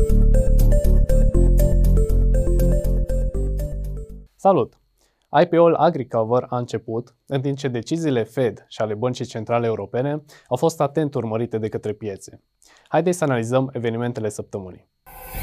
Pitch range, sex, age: 115-145 Hz, male, 20-39